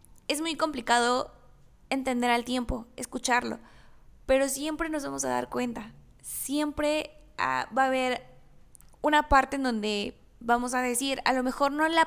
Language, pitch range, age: Spanish, 230-270 Hz, 10-29